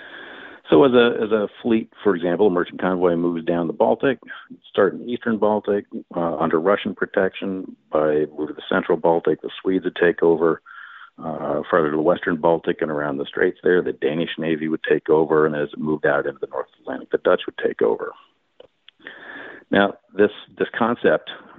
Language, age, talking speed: English, 50-69, 195 wpm